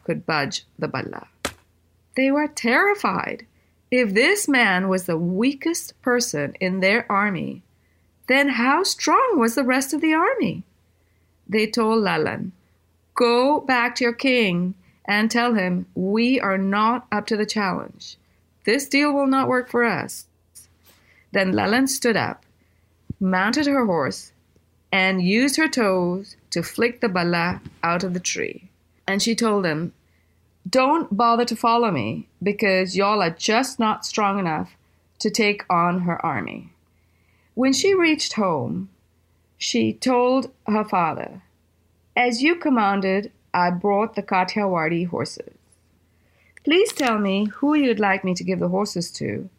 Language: English